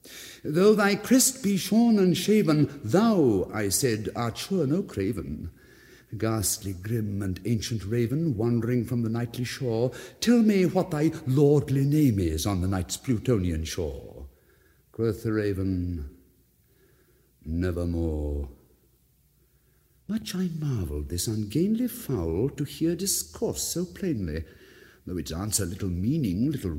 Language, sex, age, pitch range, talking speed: English, male, 60-79, 95-155 Hz, 130 wpm